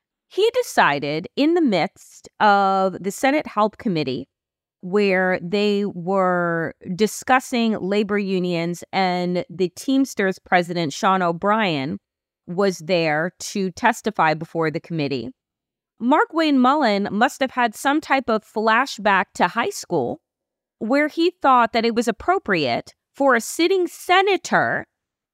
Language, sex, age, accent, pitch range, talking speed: English, female, 30-49, American, 195-300 Hz, 125 wpm